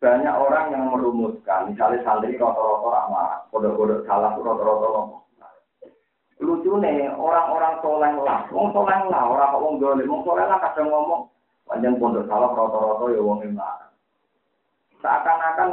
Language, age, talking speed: Indonesian, 40-59, 140 wpm